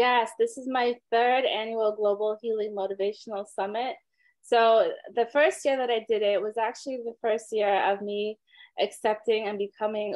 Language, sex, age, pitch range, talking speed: English, female, 20-39, 195-230 Hz, 165 wpm